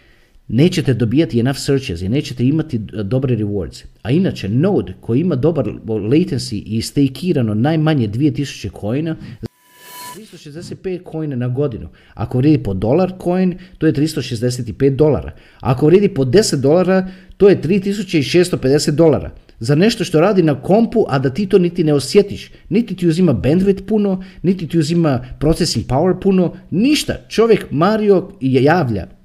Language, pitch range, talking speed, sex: Croatian, 135-190 Hz, 145 wpm, male